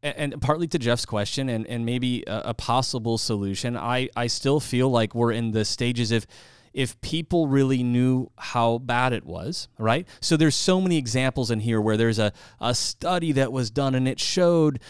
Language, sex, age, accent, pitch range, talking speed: English, male, 30-49, American, 120-155 Hz, 195 wpm